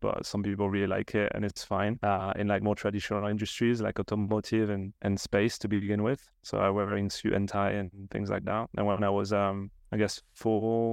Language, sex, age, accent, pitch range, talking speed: English, male, 30-49, French, 100-110 Hz, 225 wpm